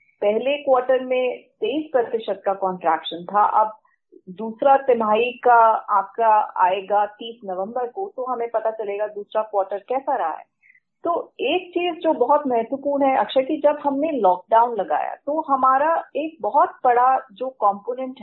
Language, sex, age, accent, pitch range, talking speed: Hindi, female, 30-49, native, 215-290 Hz, 150 wpm